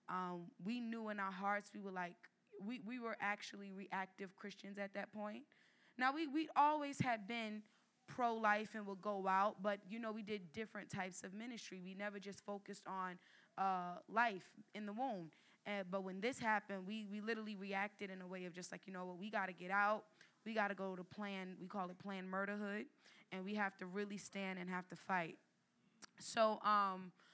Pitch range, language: 185-215 Hz, English